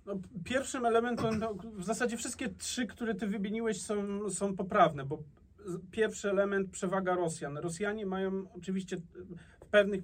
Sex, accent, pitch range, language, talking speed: male, native, 160-180 Hz, Polish, 145 wpm